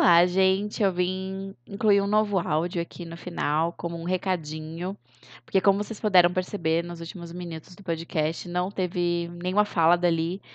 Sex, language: female, Portuguese